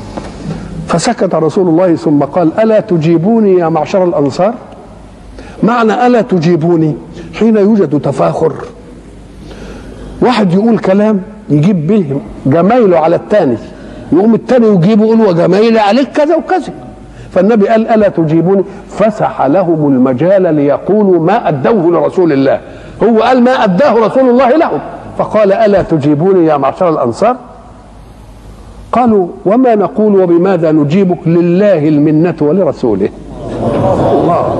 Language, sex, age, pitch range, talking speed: Arabic, male, 50-69, 155-220 Hz, 115 wpm